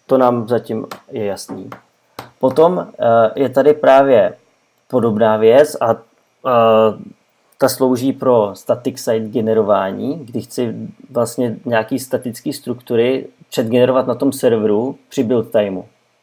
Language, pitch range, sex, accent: Czech, 120-130 Hz, male, native